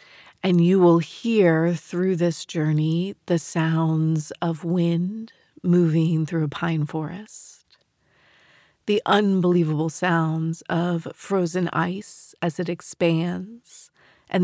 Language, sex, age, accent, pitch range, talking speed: English, female, 40-59, American, 170-195 Hz, 110 wpm